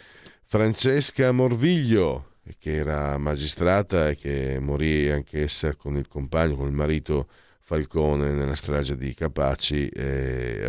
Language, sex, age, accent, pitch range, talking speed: Italian, male, 50-69, native, 75-90 Hz, 120 wpm